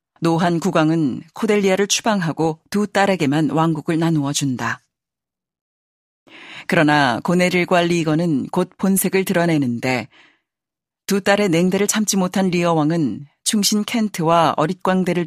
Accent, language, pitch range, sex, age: native, Korean, 155-200 Hz, female, 40-59